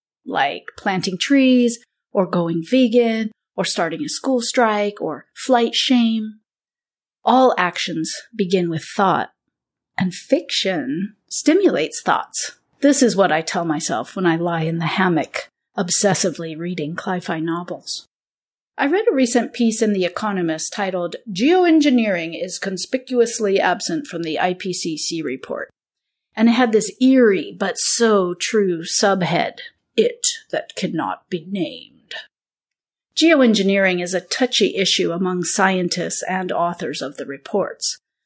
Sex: female